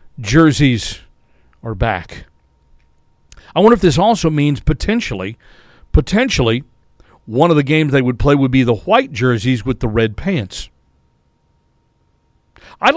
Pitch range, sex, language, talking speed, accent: 120-165 Hz, male, English, 130 wpm, American